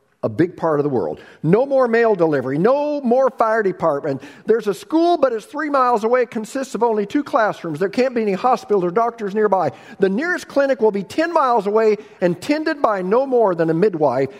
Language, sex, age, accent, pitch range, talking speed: English, male, 50-69, American, 160-215 Hz, 215 wpm